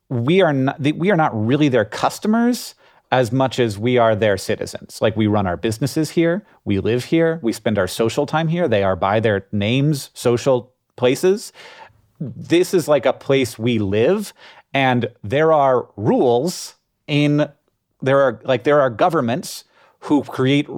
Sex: male